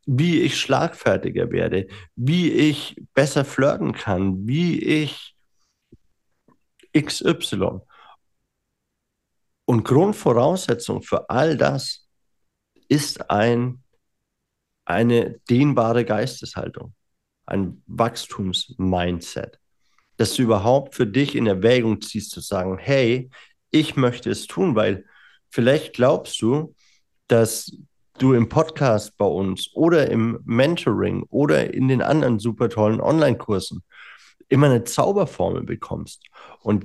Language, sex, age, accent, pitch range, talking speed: German, male, 50-69, German, 110-145 Hz, 105 wpm